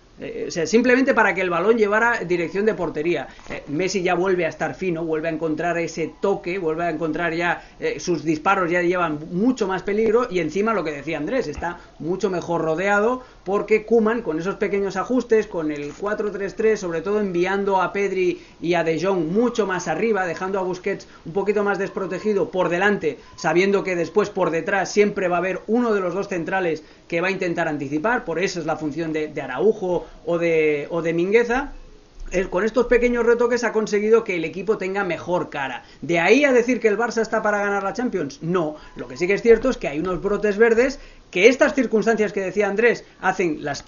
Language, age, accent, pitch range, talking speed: Spanish, 30-49, Spanish, 170-220 Hz, 205 wpm